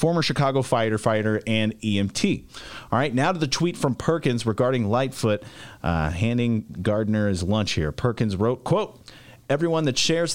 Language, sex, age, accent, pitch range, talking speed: English, male, 30-49, American, 110-140 Hz, 155 wpm